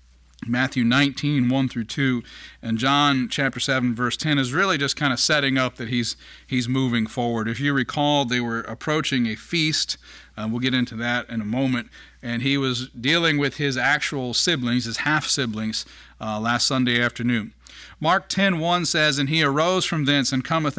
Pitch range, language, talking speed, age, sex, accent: 120-145 Hz, English, 185 wpm, 40-59, male, American